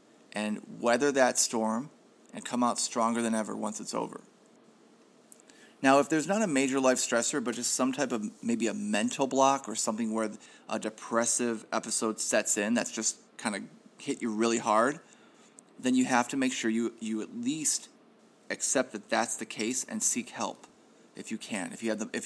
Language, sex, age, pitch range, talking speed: English, male, 30-49, 110-150 Hz, 185 wpm